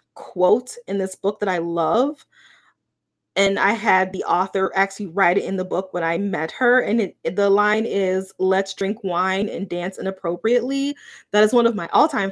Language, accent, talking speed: English, American, 190 wpm